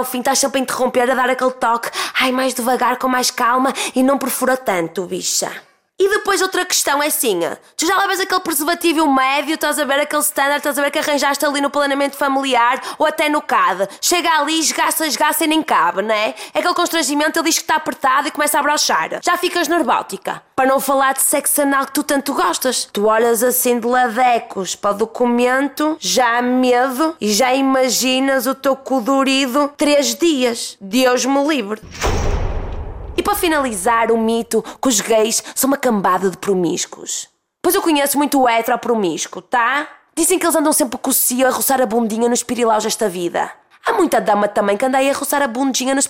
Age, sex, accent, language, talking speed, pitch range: 20-39, female, Brazilian, Portuguese, 205 wpm, 240-295 Hz